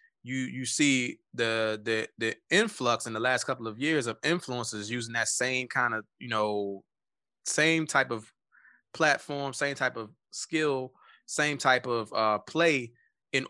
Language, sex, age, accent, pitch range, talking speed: English, male, 20-39, American, 115-145 Hz, 160 wpm